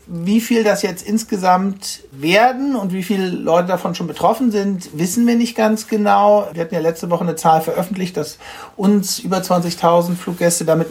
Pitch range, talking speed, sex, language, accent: 170-205 Hz, 180 wpm, male, German, German